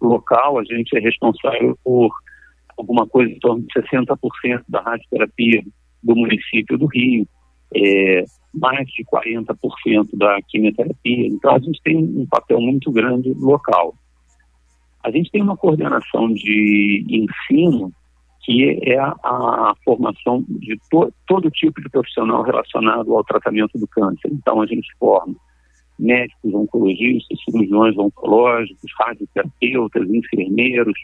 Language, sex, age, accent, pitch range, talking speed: Portuguese, male, 50-69, Brazilian, 90-130 Hz, 130 wpm